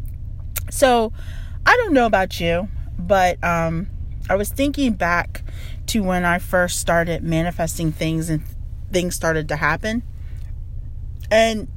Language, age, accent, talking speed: English, 30-49, American, 130 wpm